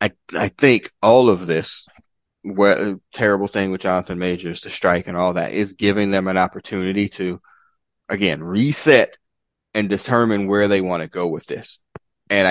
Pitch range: 90-110 Hz